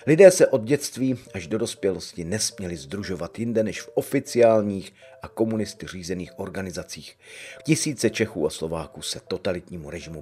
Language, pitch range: Czech, 90-110 Hz